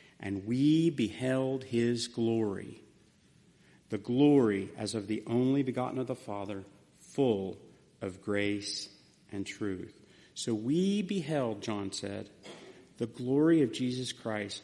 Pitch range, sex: 120-165 Hz, male